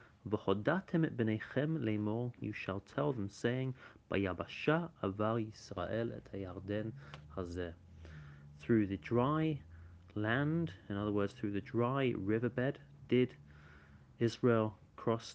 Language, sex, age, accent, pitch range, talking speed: English, male, 30-49, British, 100-125 Hz, 90 wpm